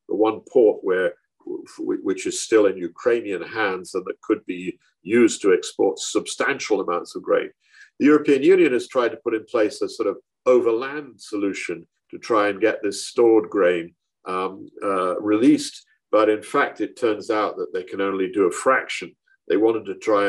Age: 50-69